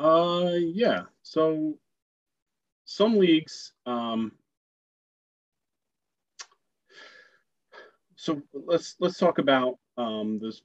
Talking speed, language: 75 wpm, English